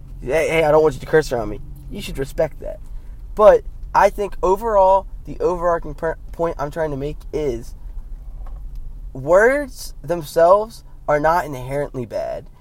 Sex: male